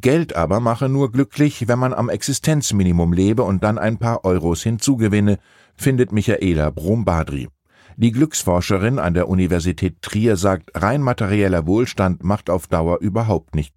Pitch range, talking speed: 90-120 Hz, 150 wpm